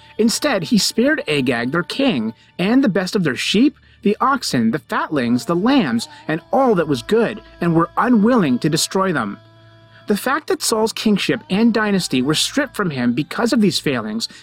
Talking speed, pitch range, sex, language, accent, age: 185 wpm, 155-245 Hz, male, English, American, 30-49